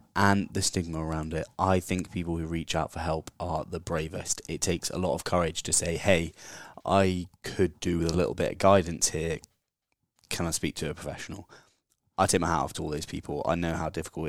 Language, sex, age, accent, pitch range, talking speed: English, male, 20-39, British, 85-95 Hz, 225 wpm